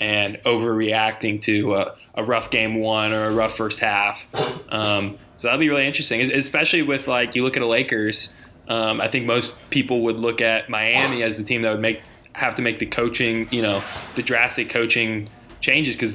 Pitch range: 110-125 Hz